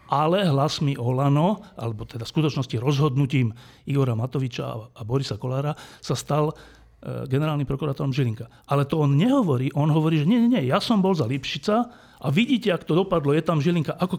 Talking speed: 185 wpm